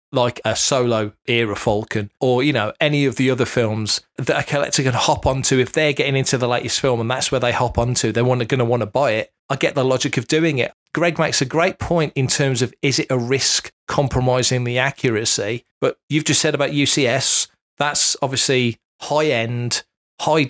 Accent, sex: British, male